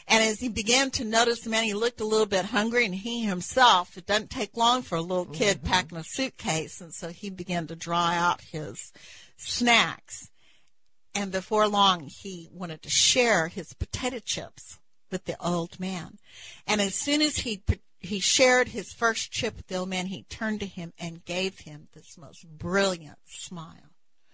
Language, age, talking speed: English, 60-79, 185 wpm